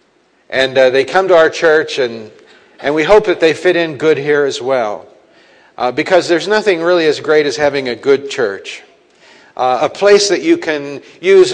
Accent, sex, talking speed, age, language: American, male, 200 wpm, 50-69, English